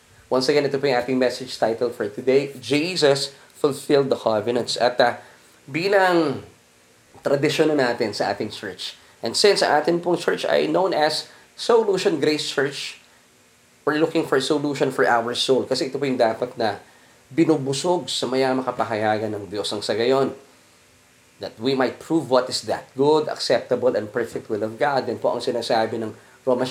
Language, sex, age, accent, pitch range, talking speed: English, male, 20-39, Filipino, 115-150 Hz, 170 wpm